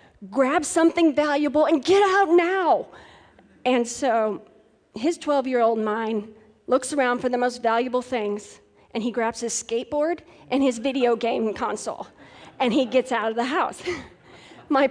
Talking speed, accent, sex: 150 wpm, American, female